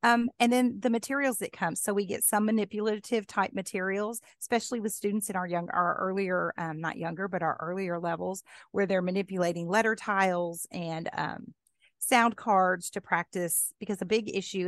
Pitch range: 175-220 Hz